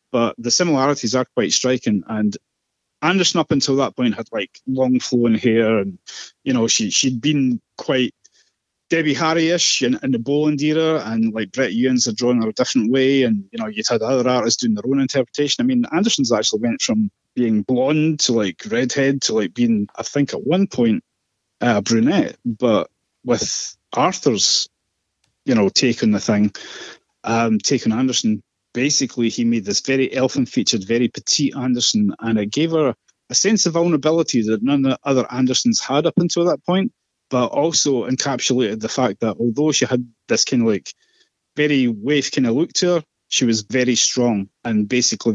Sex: male